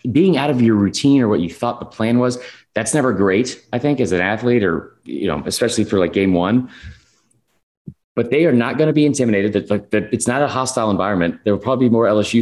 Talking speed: 230 wpm